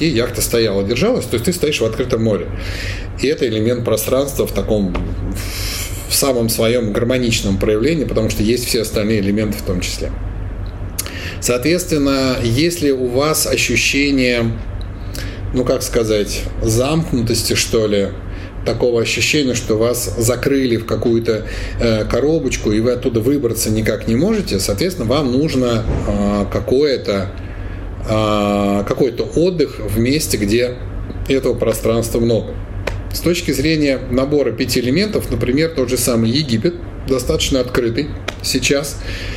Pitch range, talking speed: 100-125 Hz, 125 wpm